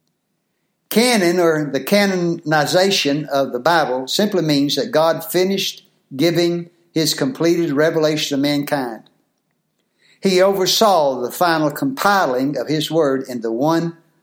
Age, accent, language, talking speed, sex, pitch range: 60-79, American, English, 120 wpm, male, 140-185 Hz